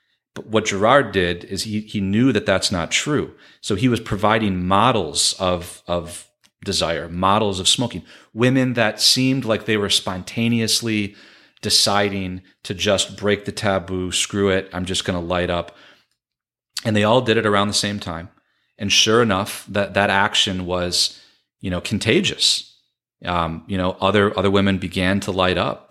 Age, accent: 30-49, American